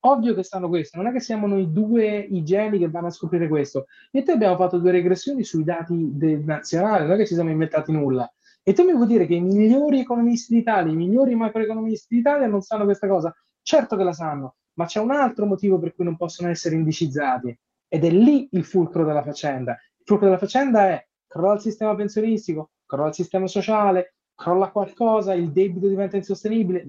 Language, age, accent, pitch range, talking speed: Italian, 20-39, native, 170-230 Hz, 210 wpm